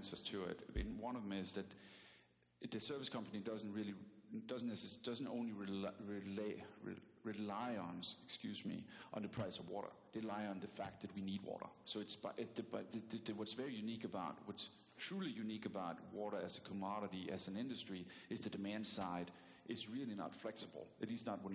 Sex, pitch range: male, 95-110 Hz